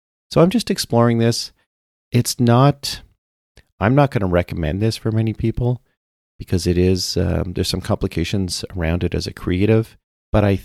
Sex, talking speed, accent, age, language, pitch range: male, 170 wpm, American, 40-59, English, 85-110 Hz